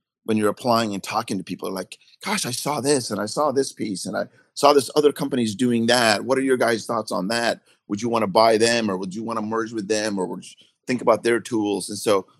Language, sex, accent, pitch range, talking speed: English, male, American, 100-120 Hz, 265 wpm